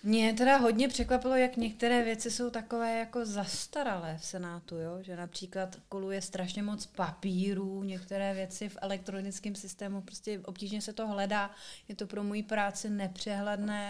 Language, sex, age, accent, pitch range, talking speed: Czech, female, 30-49, native, 195-230 Hz, 155 wpm